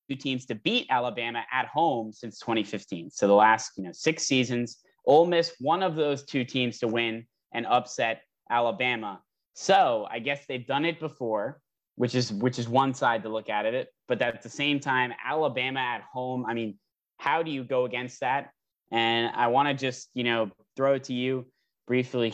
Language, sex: English, male